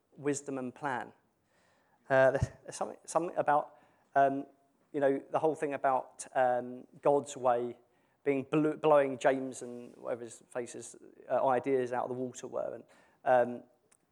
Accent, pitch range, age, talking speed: British, 130-155 Hz, 30-49, 150 wpm